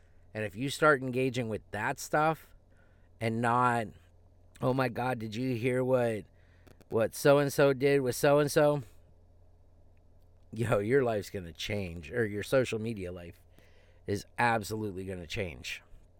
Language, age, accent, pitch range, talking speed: English, 30-49, American, 90-120 Hz, 140 wpm